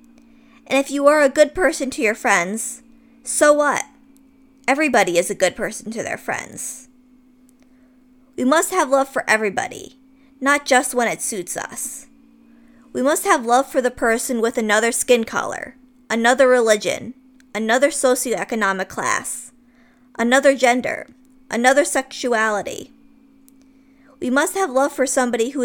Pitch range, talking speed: 240-265 Hz, 140 wpm